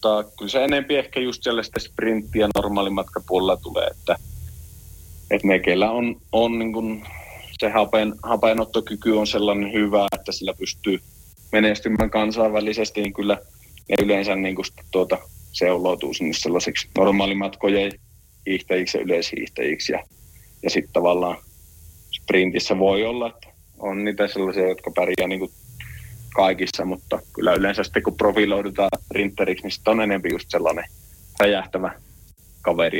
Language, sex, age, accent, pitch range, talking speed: Finnish, male, 30-49, native, 95-110 Hz, 125 wpm